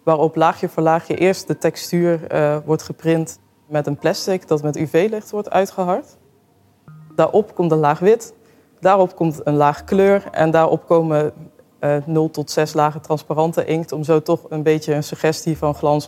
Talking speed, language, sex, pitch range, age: 175 wpm, Dutch, female, 150-165 Hz, 20-39